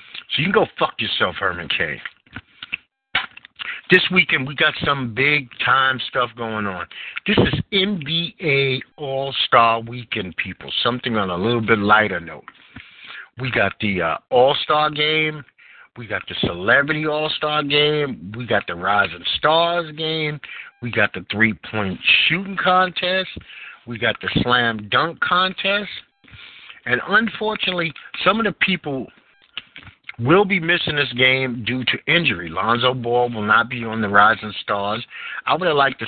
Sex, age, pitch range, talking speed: male, 50-69, 115-170 Hz, 145 wpm